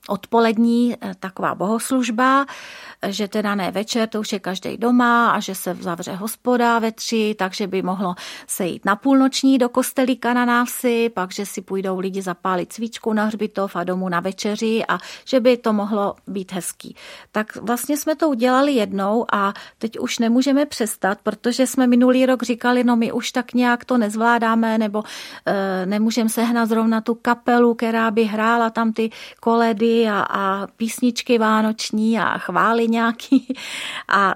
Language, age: Czech, 40-59